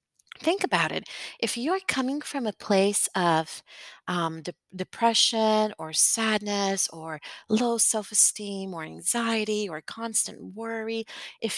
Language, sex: English, female